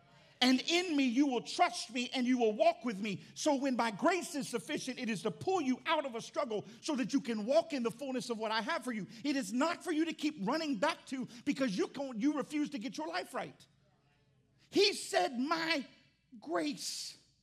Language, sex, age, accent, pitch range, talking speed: English, male, 50-69, American, 225-300 Hz, 225 wpm